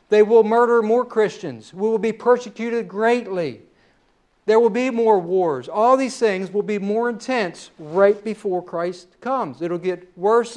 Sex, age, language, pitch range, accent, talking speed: male, 60-79, English, 205-240 Hz, American, 170 wpm